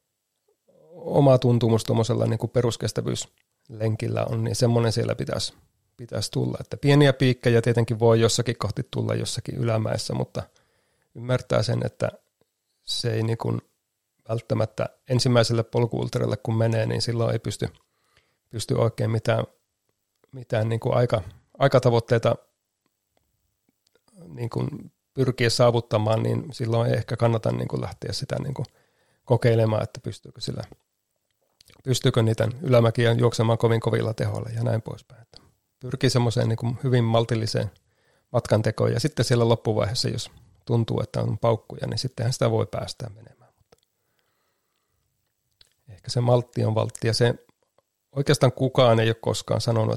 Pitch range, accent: 110-125 Hz, native